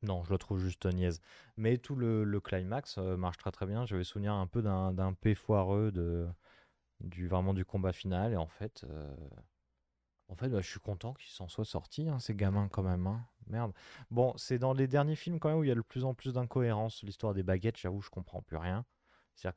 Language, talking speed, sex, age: French, 240 wpm, male, 20-39